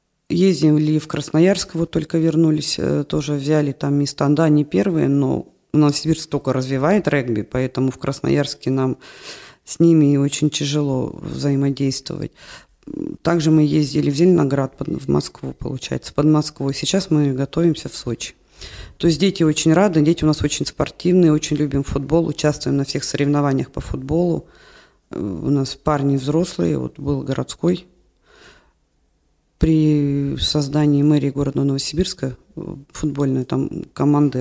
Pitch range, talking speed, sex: 140-170 Hz, 135 wpm, female